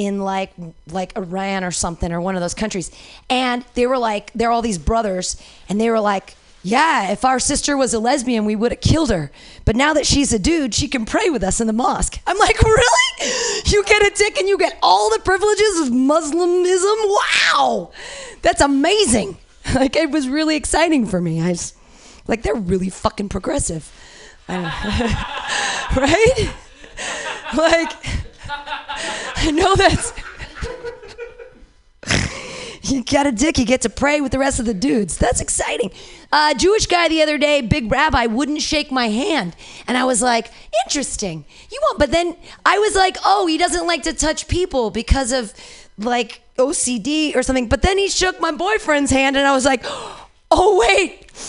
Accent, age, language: American, 30-49, English